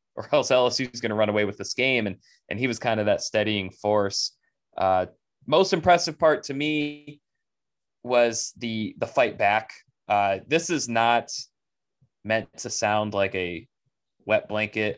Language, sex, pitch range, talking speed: English, male, 105-130 Hz, 170 wpm